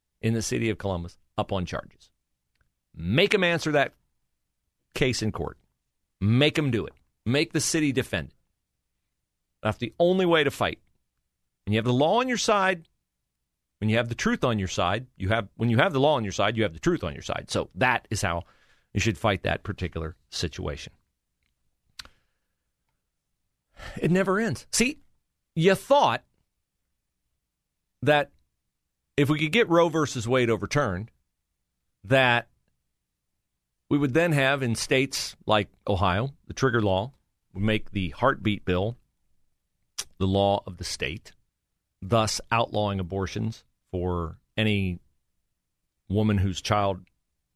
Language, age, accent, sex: English, 40-59, American, male